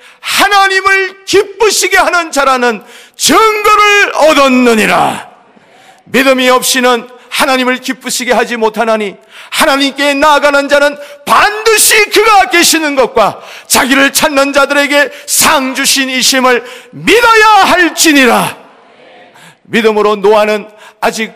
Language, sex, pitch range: Korean, male, 230-310 Hz